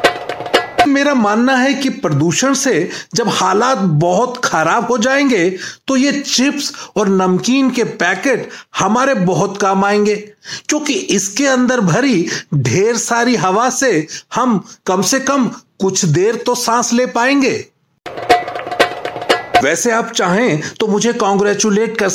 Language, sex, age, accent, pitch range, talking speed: Hindi, male, 40-59, native, 185-250 Hz, 130 wpm